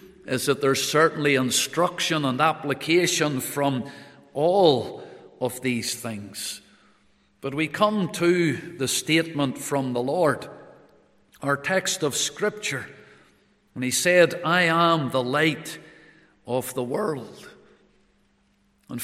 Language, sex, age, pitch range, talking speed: English, male, 50-69, 140-195 Hz, 115 wpm